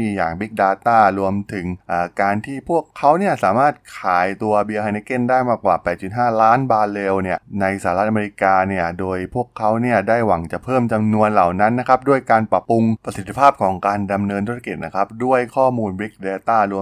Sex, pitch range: male, 95-120 Hz